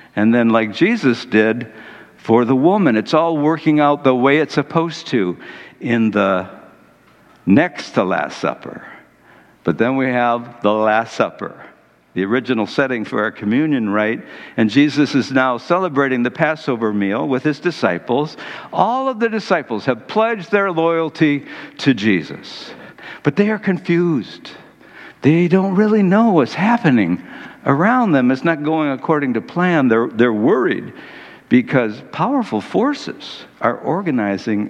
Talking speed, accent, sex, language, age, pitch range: 145 wpm, American, male, English, 60-79, 115-165 Hz